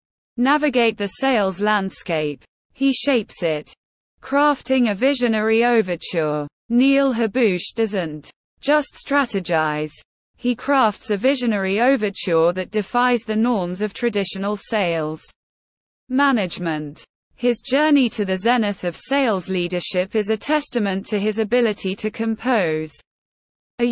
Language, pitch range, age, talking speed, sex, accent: English, 185-250 Hz, 20-39, 115 wpm, female, British